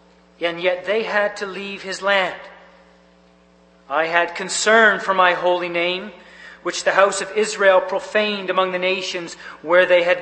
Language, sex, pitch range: English, male, 145-195 Hz